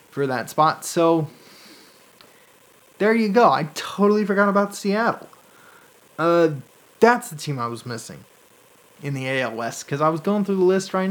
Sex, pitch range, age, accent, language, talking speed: male, 145-195 Hz, 30-49, American, English, 165 wpm